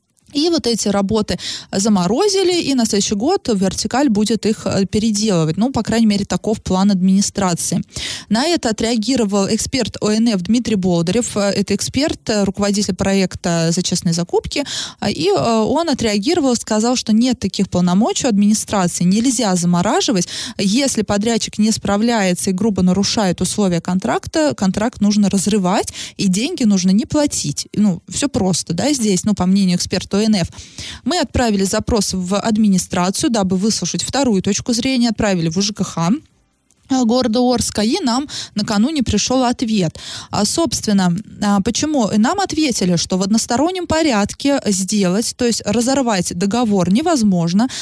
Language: Russian